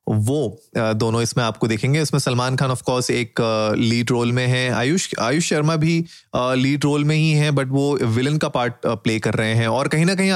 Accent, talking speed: native, 220 wpm